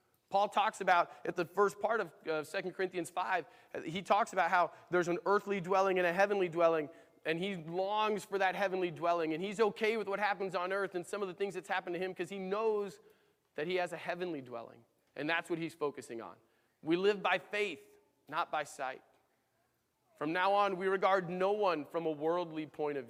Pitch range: 160-200 Hz